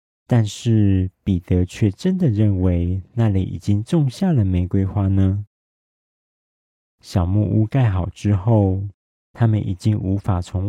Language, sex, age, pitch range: Chinese, male, 40-59, 90-110 Hz